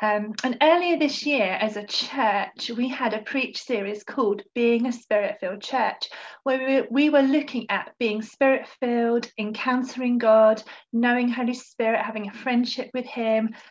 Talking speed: 160 wpm